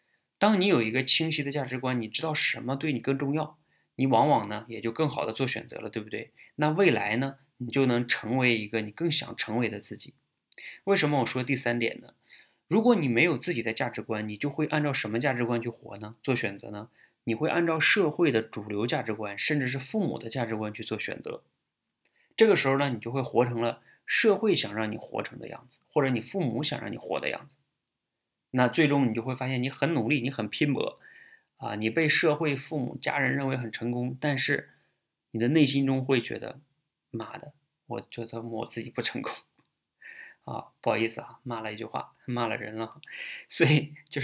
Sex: male